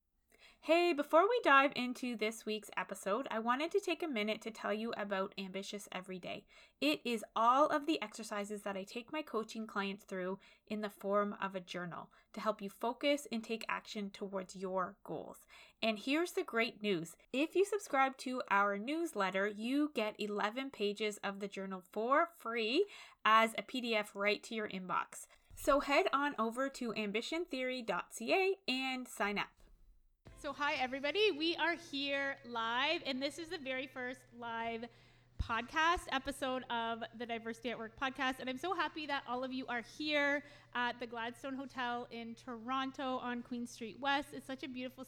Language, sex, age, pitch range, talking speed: English, female, 20-39, 215-280 Hz, 175 wpm